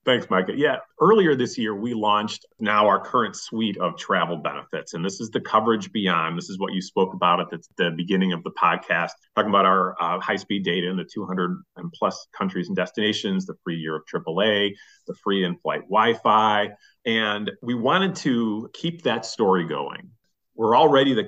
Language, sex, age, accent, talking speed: English, male, 40-59, American, 185 wpm